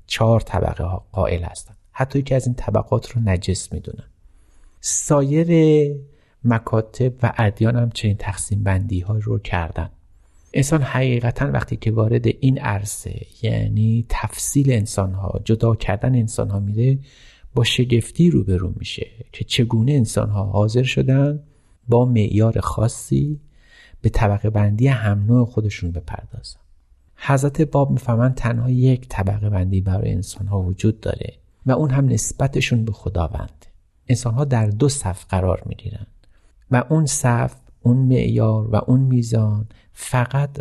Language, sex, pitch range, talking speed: Persian, male, 100-125 Hz, 140 wpm